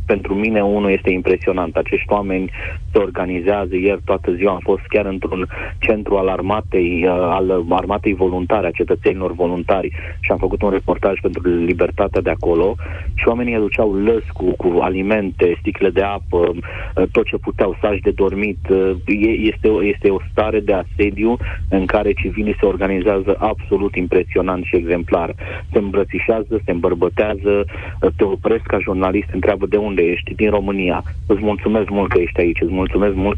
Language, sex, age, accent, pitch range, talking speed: Romanian, male, 30-49, native, 90-100 Hz, 155 wpm